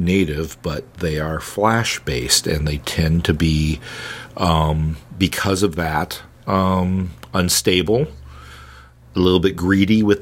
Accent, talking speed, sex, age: American, 125 wpm, male, 40-59